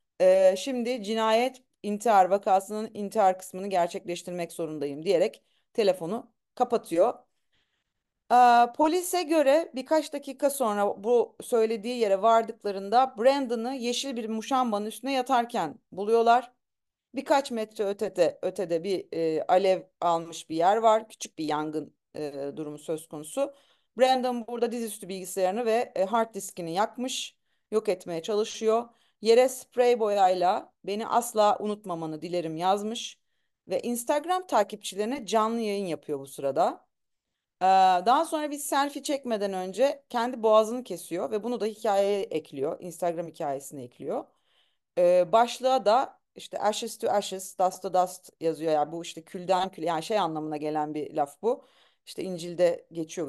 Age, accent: 40-59, native